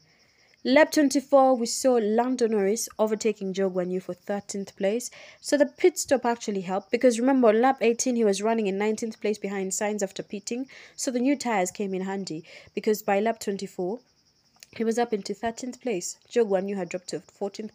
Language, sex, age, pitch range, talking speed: English, female, 20-39, 185-230 Hz, 185 wpm